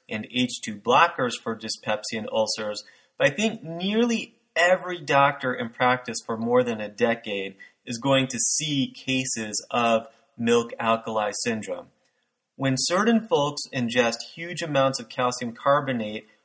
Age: 30-49